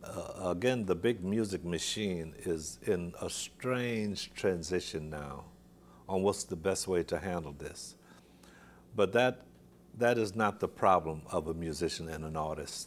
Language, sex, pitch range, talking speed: English, male, 75-95 Hz, 155 wpm